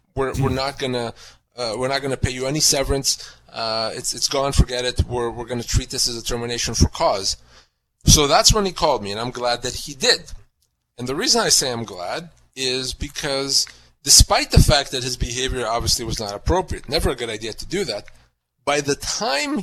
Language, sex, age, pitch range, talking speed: English, male, 30-49, 125-165 Hz, 210 wpm